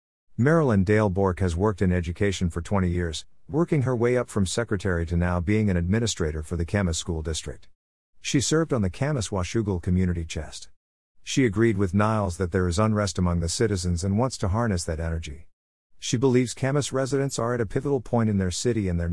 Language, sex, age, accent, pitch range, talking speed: English, male, 50-69, American, 85-115 Hz, 205 wpm